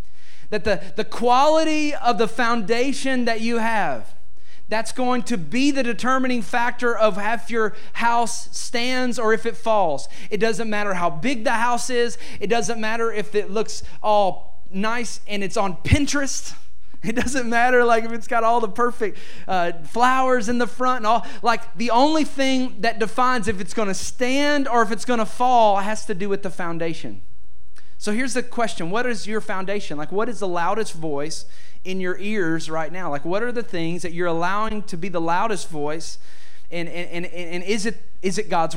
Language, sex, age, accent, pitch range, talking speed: English, male, 30-49, American, 165-230 Hz, 195 wpm